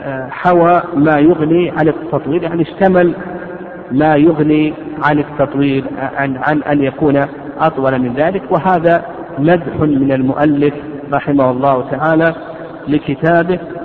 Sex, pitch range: male, 140-165 Hz